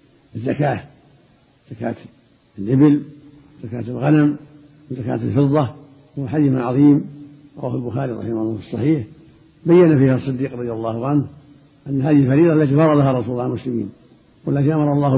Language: Arabic